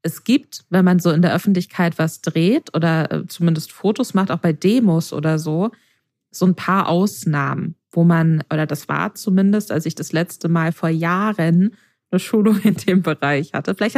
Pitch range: 170-210 Hz